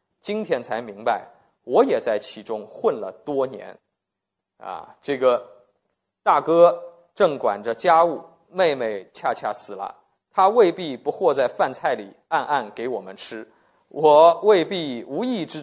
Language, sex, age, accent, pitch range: Chinese, male, 20-39, native, 120-185 Hz